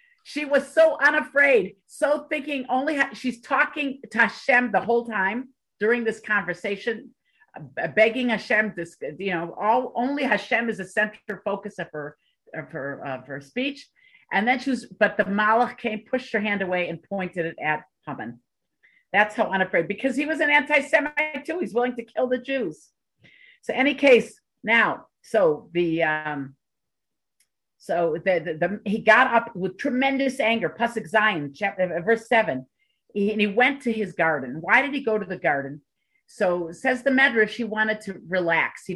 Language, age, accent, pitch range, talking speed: English, 50-69, American, 180-250 Hz, 175 wpm